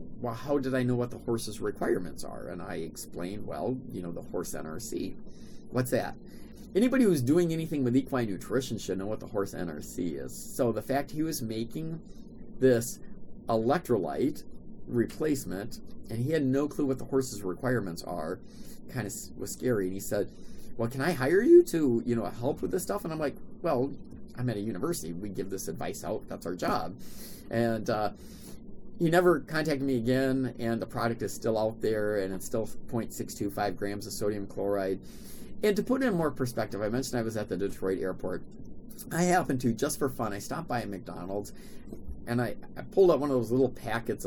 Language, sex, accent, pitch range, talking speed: English, male, American, 110-145 Hz, 200 wpm